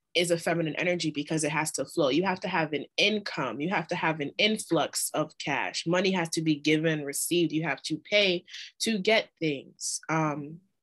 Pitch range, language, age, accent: 155-180 Hz, English, 20-39, American